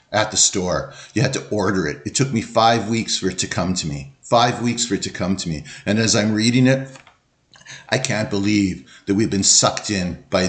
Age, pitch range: 50-69, 105-140 Hz